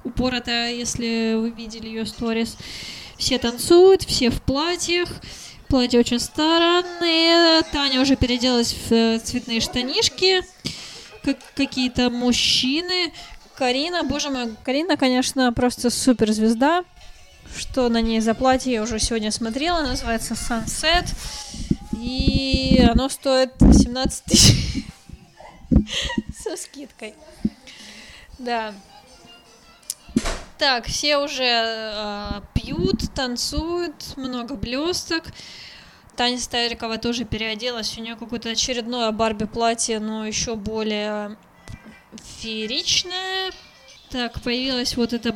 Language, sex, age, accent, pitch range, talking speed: Russian, female, 20-39, native, 230-285 Hz, 100 wpm